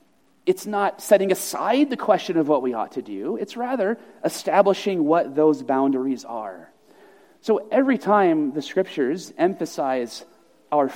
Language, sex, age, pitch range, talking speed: English, male, 30-49, 155-255 Hz, 140 wpm